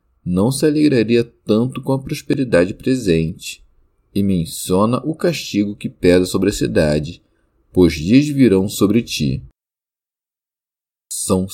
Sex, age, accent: male, 40-59, Brazilian